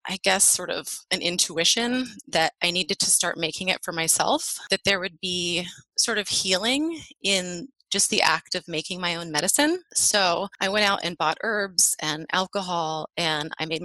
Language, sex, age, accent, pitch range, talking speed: English, female, 30-49, American, 175-210 Hz, 185 wpm